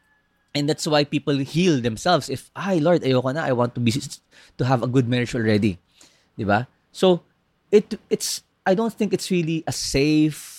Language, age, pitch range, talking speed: Filipino, 20-39, 115-170 Hz, 185 wpm